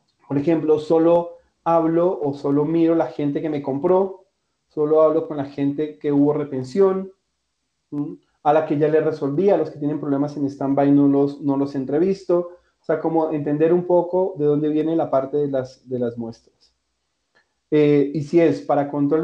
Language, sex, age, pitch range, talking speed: Spanish, male, 40-59, 140-170 Hz, 180 wpm